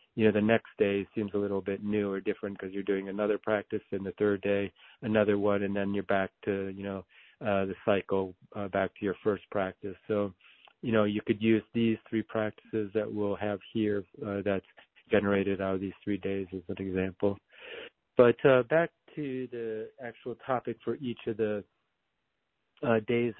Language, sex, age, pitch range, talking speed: English, male, 40-59, 100-110 Hz, 195 wpm